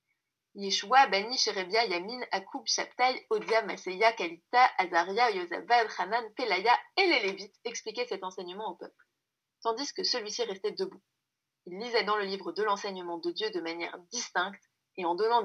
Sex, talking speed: female, 160 wpm